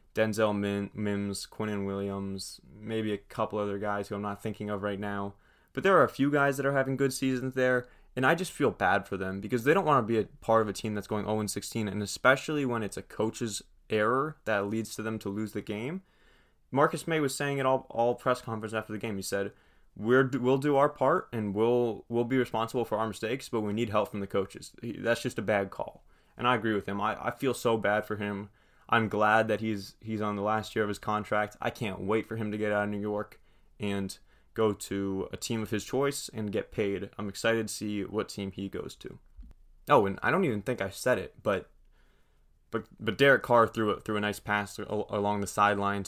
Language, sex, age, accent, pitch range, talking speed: English, male, 20-39, American, 100-120 Hz, 235 wpm